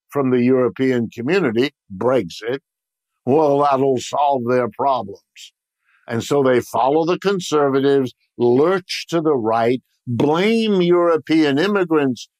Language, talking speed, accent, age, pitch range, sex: English, 110 wpm, American, 50-69, 120-160 Hz, male